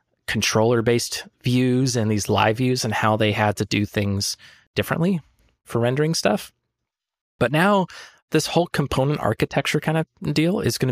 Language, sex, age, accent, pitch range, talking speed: English, male, 20-39, American, 115-150 Hz, 155 wpm